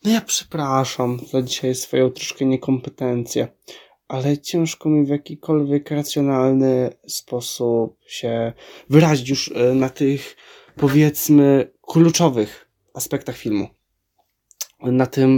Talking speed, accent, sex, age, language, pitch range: 100 wpm, native, male, 20-39, Polish, 125-165 Hz